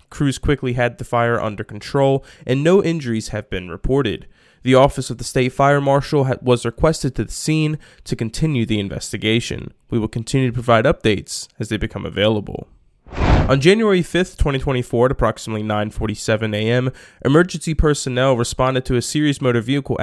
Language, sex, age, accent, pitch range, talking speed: English, male, 20-39, American, 110-140 Hz, 165 wpm